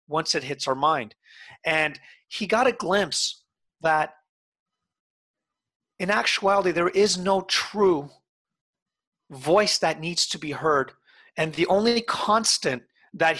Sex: male